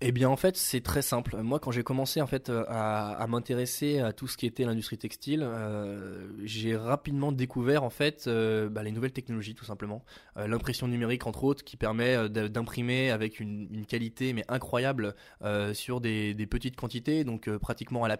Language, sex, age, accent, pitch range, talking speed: French, male, 20-39, French, 115-140 Hz, 200 wpm